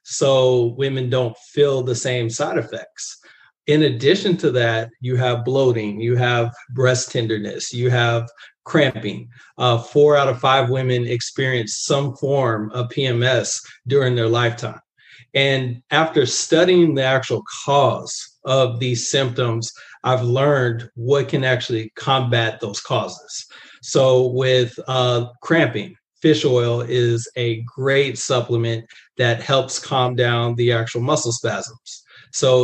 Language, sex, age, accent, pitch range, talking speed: English, male, 40-59, American, 120-135 Hz, 130 wpm